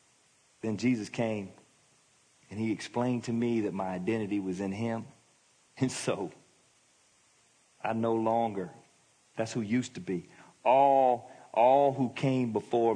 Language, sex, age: English, male, 40-59